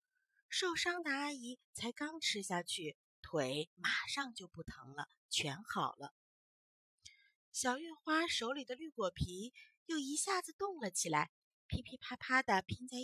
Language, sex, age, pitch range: Chinese, female, 30-49, 170-285 Hz